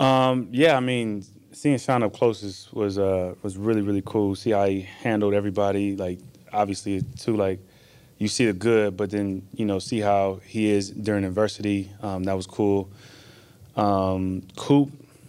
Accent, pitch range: American, 95-110 Hz